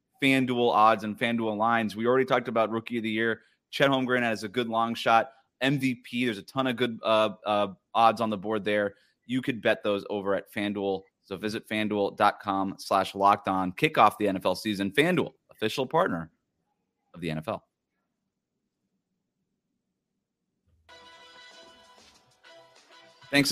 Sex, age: male, 30-49